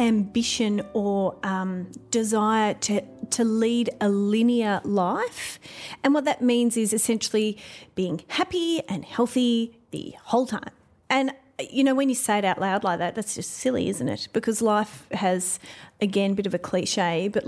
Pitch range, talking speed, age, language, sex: 200-235 Hz, 165 wpm, 30-49, English, female